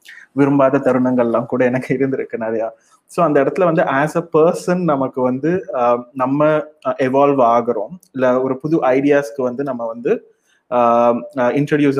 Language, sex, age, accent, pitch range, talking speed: Tamil, male, 30-49, native, 125-155 Hz, 75 wpm